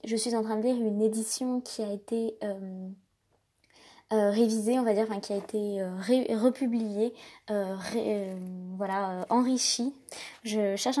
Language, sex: French, female